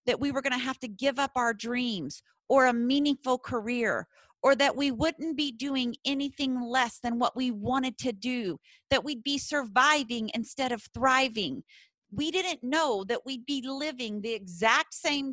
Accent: American